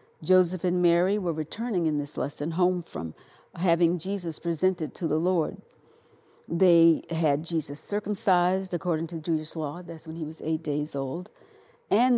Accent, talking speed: American, 160 wpm